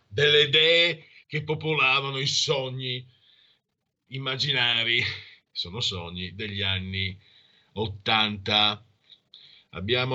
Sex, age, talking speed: male, 50-69, 75 wpm